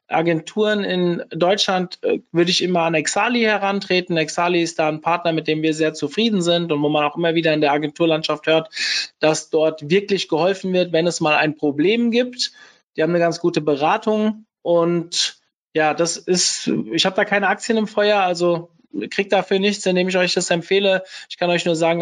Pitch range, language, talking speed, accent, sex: 160-200 Hz, German, 195 wpm, German, male